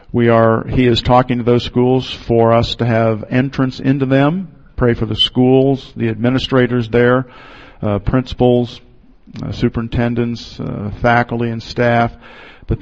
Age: 50-69